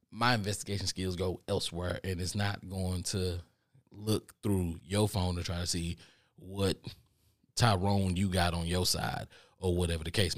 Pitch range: 85-105 Hz